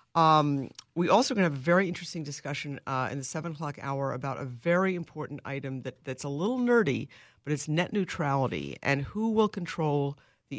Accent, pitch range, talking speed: American, 135-165 Hz, 205 wpm